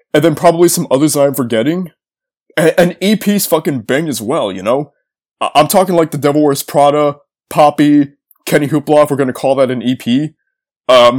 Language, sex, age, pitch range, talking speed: English, male, 20-39, 135-175 Hz, 190 wpm